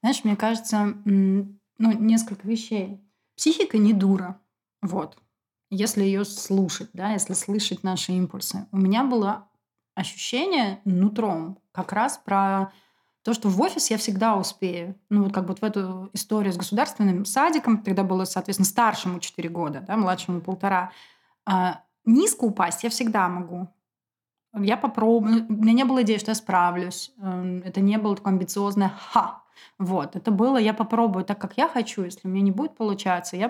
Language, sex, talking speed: Russian, female, 160 wpm